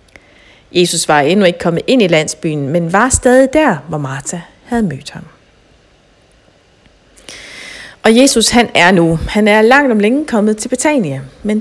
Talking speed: 160 wpm